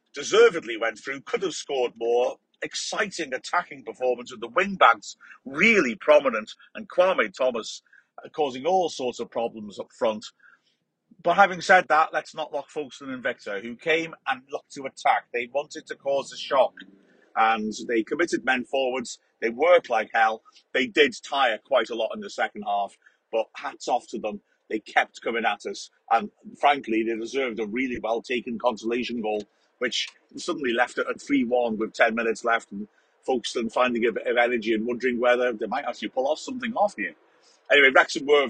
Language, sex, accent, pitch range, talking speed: English, male, British, 115-155 Hz, 185 wpm